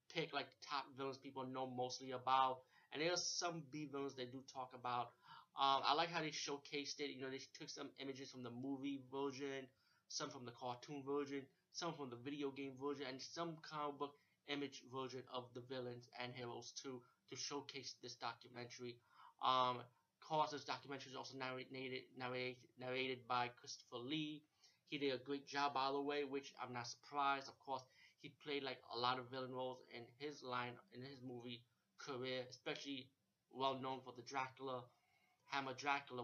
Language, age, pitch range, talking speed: English, 20-39, 125-140 Hz, 180 wpm